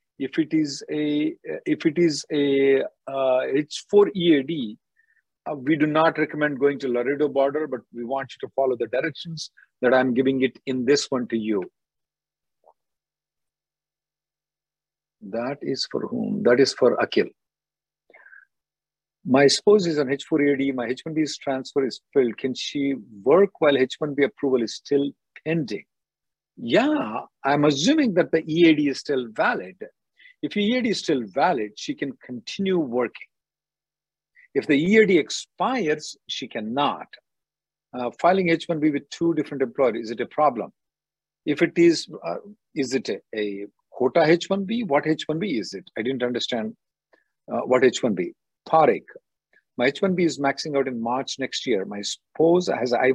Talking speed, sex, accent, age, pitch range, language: 150 wpm, male, Indian, 50-69, 130-165 Hz, English